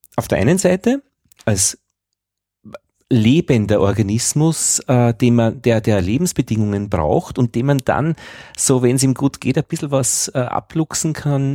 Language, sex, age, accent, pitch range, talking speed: German, male, 40-59, Austrian, 105-150 Hz, 145 wpm